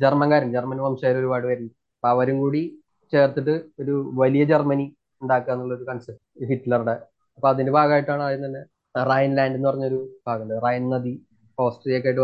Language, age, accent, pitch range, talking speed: Malayalam, 20-39, native, 125-140 Hz, 130 wpm